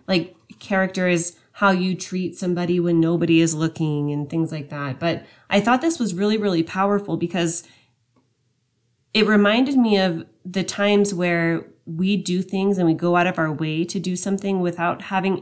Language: English